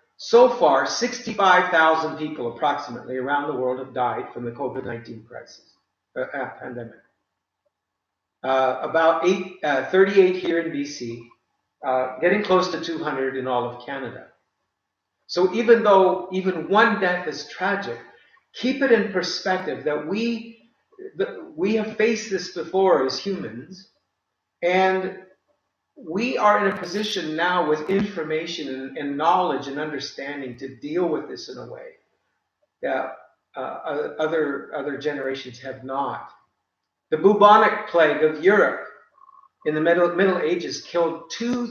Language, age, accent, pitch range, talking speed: English, 50-69, American, 140-205 Hz, 140 wpm